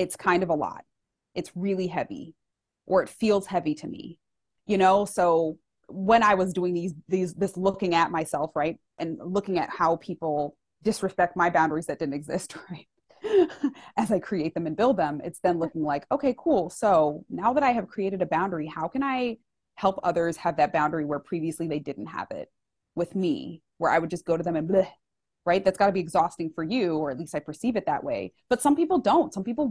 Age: 20-39